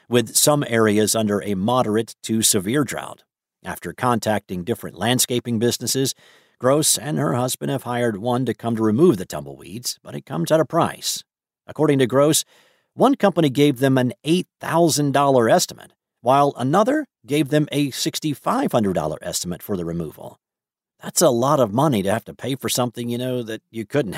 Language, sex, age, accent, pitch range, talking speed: English, male, 50-69, American, 110-150 Hz, 170 wpm